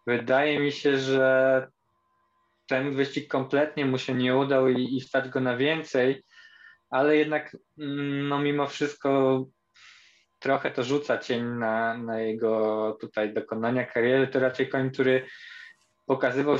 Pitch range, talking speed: 125-150 Hz, 135 wpm